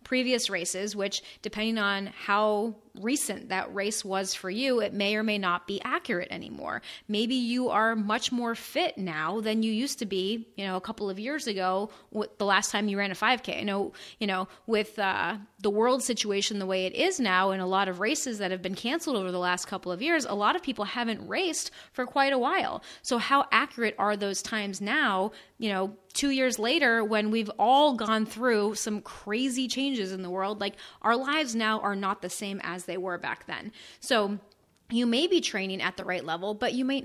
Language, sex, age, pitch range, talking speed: English, female, 30-49, 195-240 Hz, 215 wpm